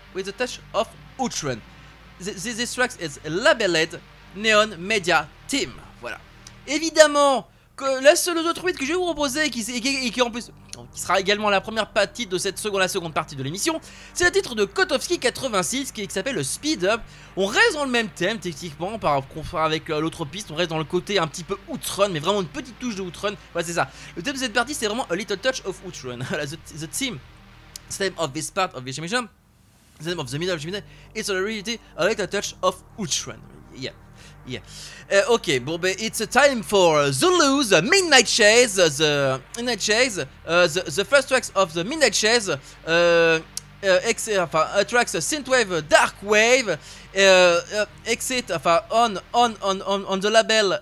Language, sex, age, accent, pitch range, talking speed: French, male, 20-39, French, 175-245 Hz, 195 wpm